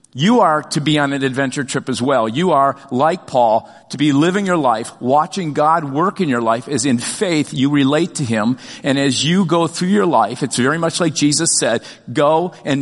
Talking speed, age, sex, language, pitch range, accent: 220 wpm, 50-69, male, English, 140-170 Hz, American